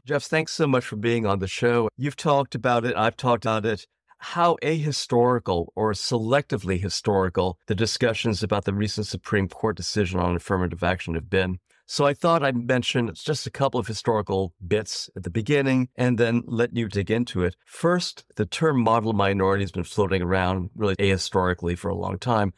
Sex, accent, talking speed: male, American, 190 wpm